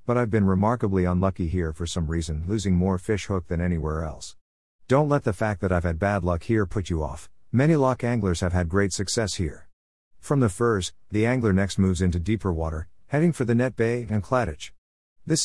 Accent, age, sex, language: American, 50-69, male, English